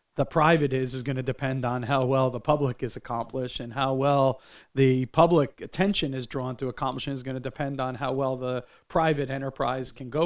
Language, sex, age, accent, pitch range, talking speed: English, male, 40-59, American, 125-140 Hz, 210 wpm